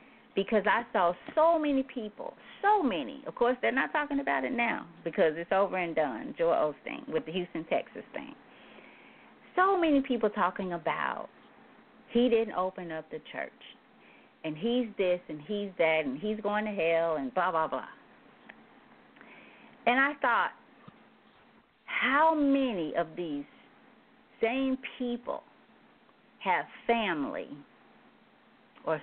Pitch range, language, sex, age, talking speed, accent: 180-255 Hz, English, female, 40-59, 135 wpm, American